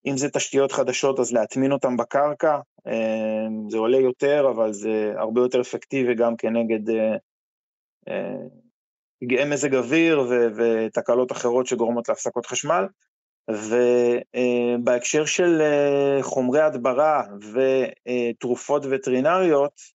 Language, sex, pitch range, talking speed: Hebrew, male, 120-150 Hz, 110 wpm